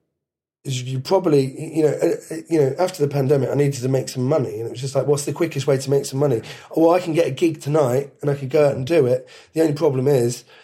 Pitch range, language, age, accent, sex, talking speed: 135-160 Hz, English, 30-49, British, male, 265 wpm